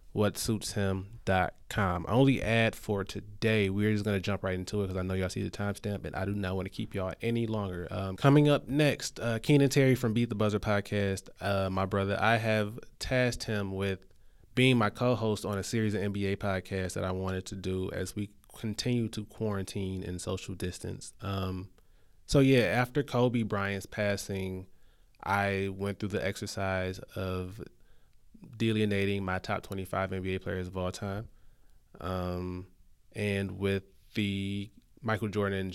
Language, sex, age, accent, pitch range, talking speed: English, male, 20-39, American, 95-110 Hz, 175 wpm